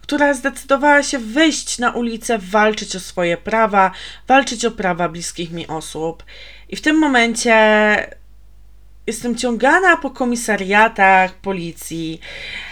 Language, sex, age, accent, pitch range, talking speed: Polish, female, 20-39, native, 175-240 Hz, 120 wpm